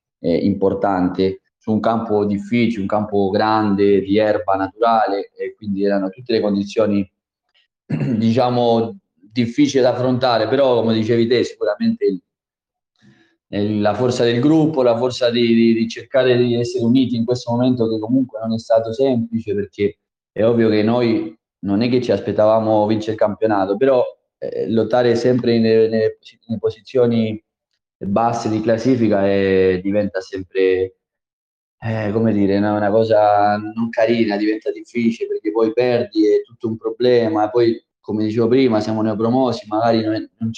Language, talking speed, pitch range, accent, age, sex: Italian, 150 wpm, 105-125 Hz, native, 20-39, male